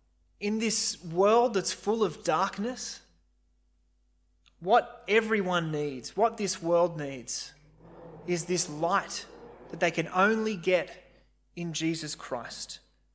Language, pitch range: English, 130-180 Hz